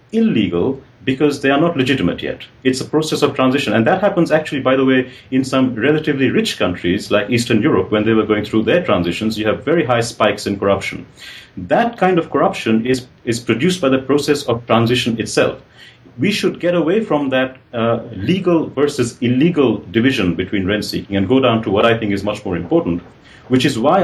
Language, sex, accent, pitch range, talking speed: English, male, Indian, 110-135 Hz, 200 wpm